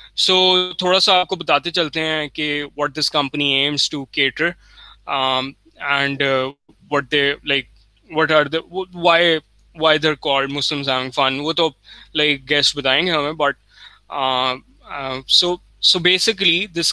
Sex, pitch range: male, 135-165 Hz